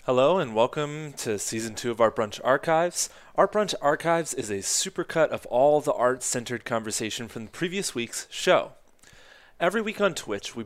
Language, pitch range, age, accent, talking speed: English, 120-160 Hz, 30-49, American, 175 wpm